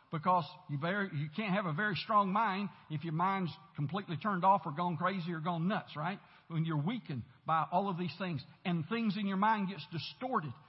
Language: English